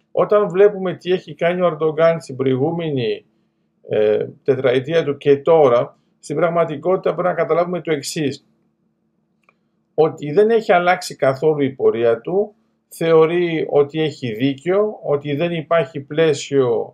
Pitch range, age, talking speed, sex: 140-185 Hz, 50-69, 130 wpm, male